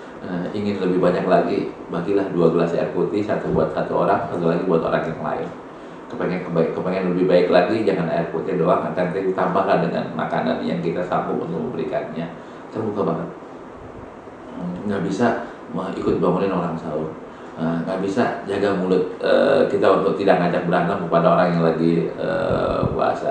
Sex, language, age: male, Indonesian, 40-59